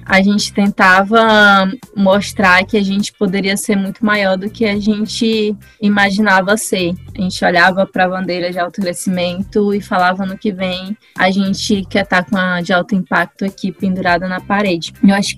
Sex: female